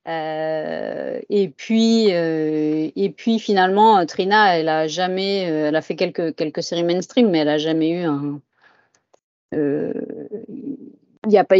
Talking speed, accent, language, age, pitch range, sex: 150 wpm, French, French, 30-49, 160-195 Hz, female